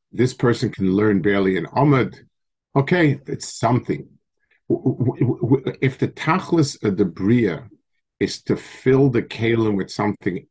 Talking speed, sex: 125 wpm, male